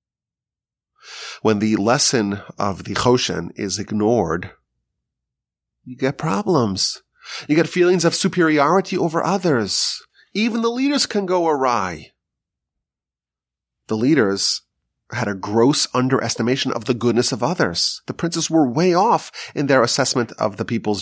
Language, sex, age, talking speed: English, male, 30-49, 130 wpm